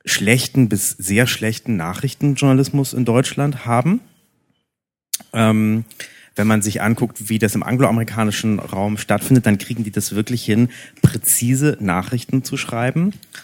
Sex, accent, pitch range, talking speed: male, German, 105-125 Hz, 130 wpm